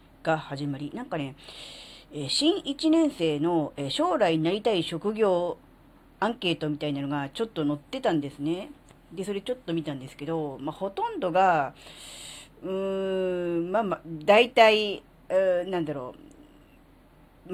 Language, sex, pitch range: Japanese, female, 155-235 Hz